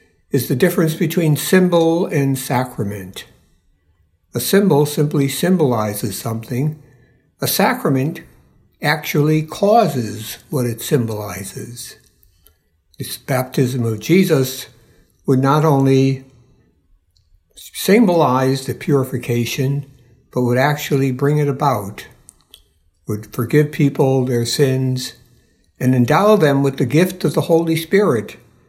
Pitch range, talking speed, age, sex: 115-150 Hz, 105 wpm, 60-79, male